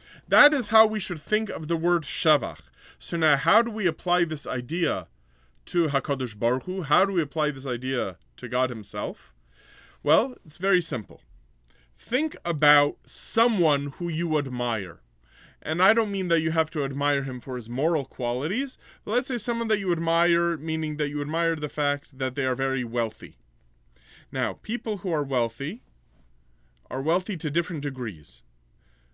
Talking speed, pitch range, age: 170 wpm, 115-175 Hz, 30-49